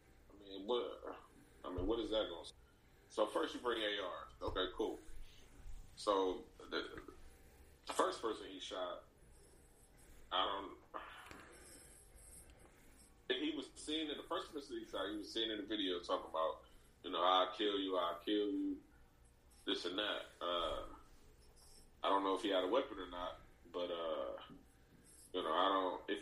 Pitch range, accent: 65-105 Hz, American